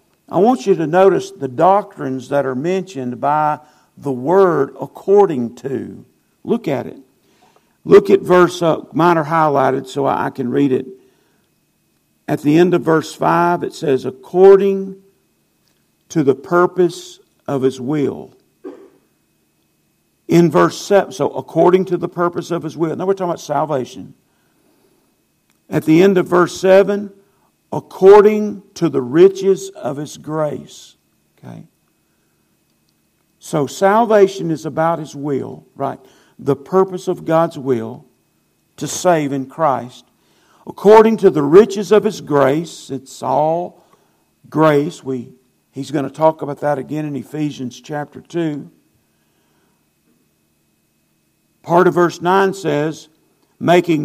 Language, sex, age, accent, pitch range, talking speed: English, male, 50-69, American, 140-185 Hz, 130 wpm